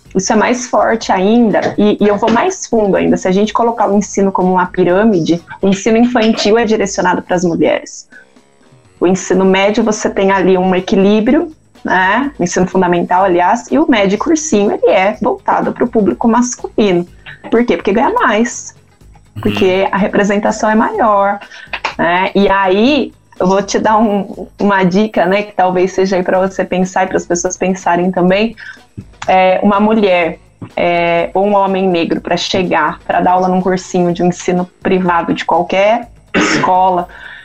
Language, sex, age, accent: Portuguese, female, 20-39, Brazilian